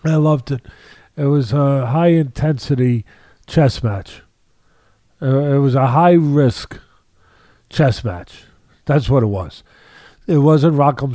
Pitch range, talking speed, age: 120-155 Hz, 120 wpm, 50-69